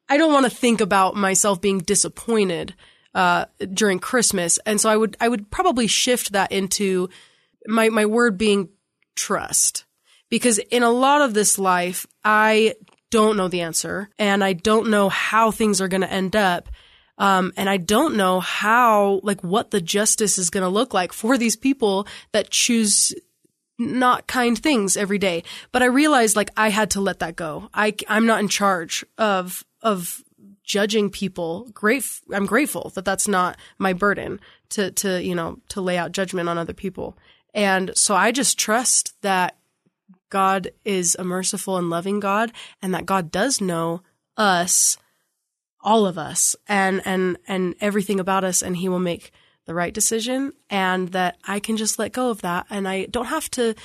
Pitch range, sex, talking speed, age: 190-225 Hz, female, 180 wpm, 20-39